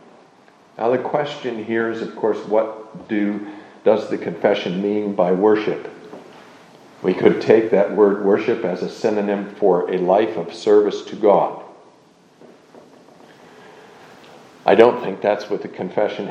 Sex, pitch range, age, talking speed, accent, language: male, 105-130 Hz, 50-69, 135 wpm, American, English